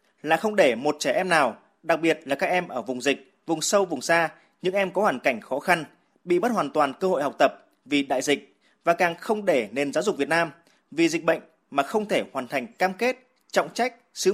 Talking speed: 245 wpm